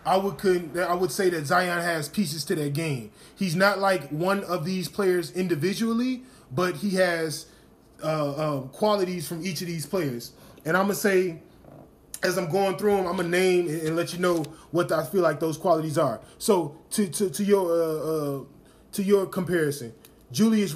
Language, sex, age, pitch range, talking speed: English, male, 20-39, 165-200 Hz, 195 wpm